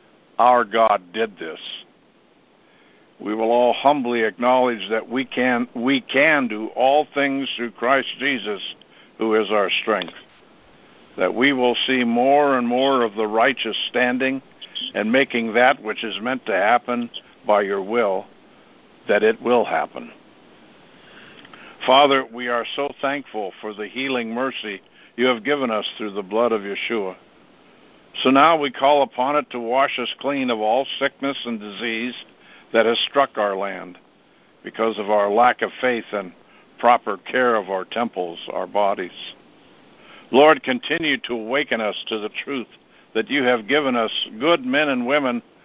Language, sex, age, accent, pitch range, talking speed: English, male, 60-79, American, 110-130 Hz, 155 wpm